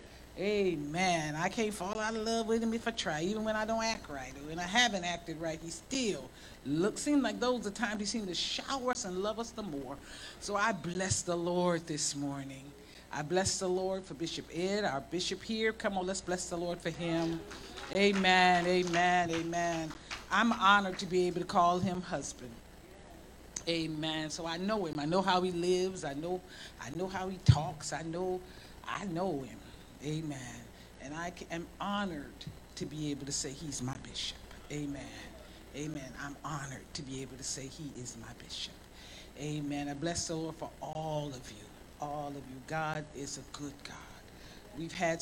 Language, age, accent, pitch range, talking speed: English, 50-69, American, 145-185 Hz, 190 wpm